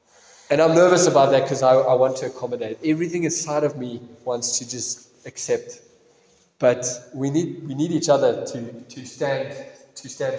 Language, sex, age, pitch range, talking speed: English, male, 20-39, 130-165 Hz, 180 wpm